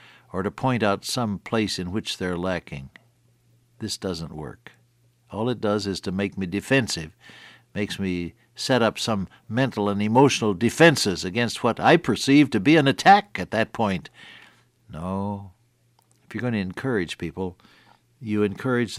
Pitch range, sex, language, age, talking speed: 90-120 Hz, male, English, 60-79, 160 wpm